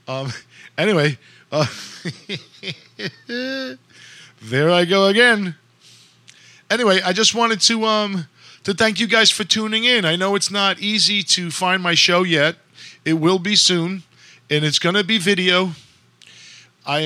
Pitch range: 145-190 Hz